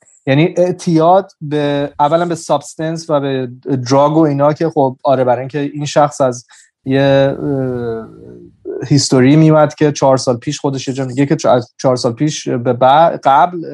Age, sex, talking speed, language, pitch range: 30-49, male, 155 wpm, Persian, 135-165 Hz